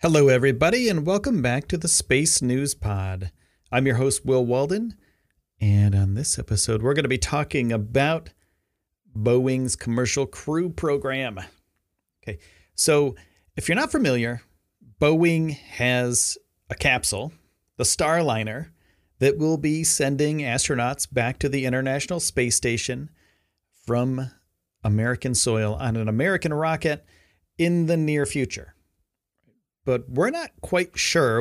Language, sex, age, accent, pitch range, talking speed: English, male, 40-59, American, 105-150 Hz, 130 wpm